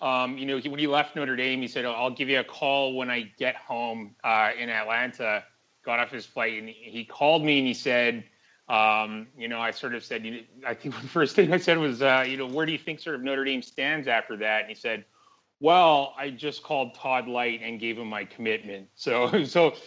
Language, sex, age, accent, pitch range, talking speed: English, male, 30-49, American, 110-130 Hz, 235 wpm